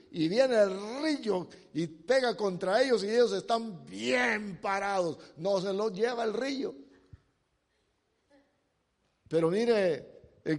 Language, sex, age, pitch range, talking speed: English, male, 50-69, 190-265 Hz, 125 wpm